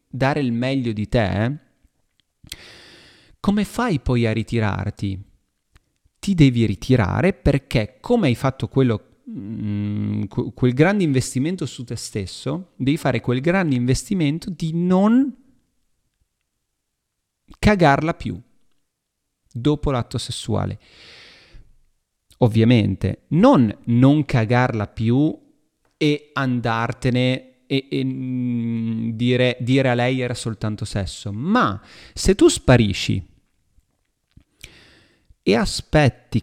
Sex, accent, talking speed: male, native, 95 wpm